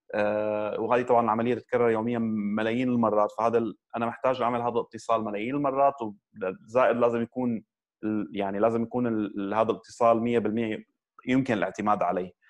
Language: Arabic